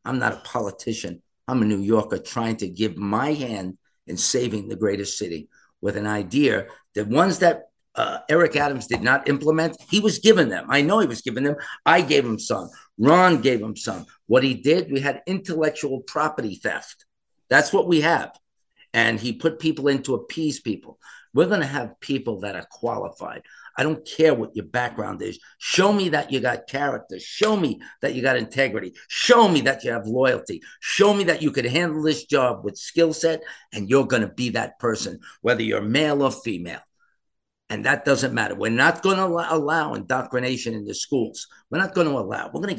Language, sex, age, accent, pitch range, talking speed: English, male, 50-69, American, 120-170 Hz, 205 wpm